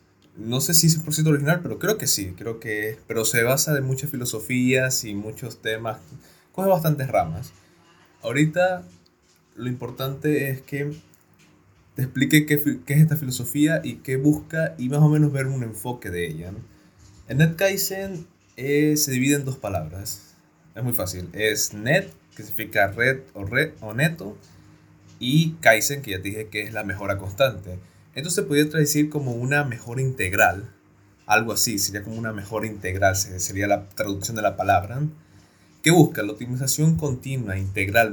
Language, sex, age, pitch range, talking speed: Spanish, male, 20-39, 100-140 Hz, 170 wpm